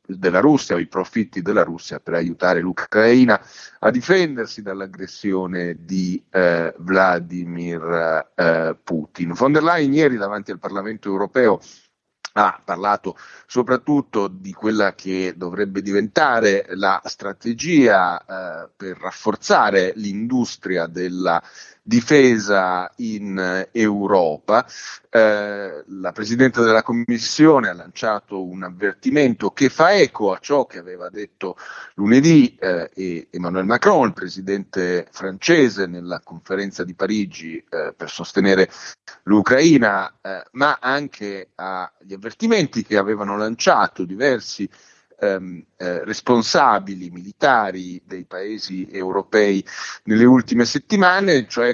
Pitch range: 90-120 Hz